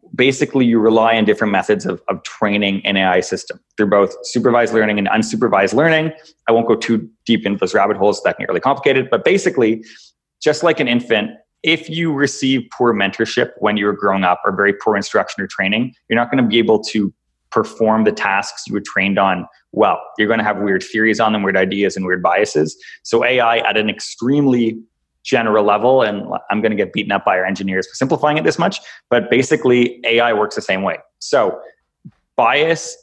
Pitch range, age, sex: 100-120 Hz, 20-39, male